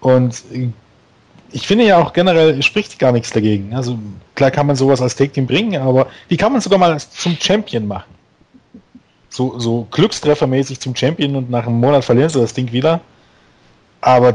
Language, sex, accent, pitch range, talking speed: German, male, German, 120-140 Hz, 175 wpm